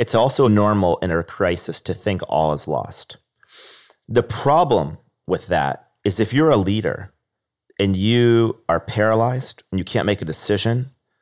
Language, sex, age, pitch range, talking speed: English, male, 30-49, 95-115 Hz, 160 wpm